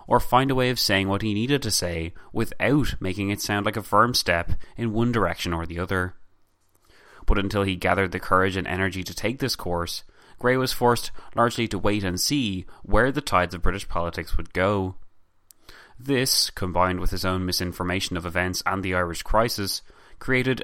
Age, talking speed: 20-39, 190 wpm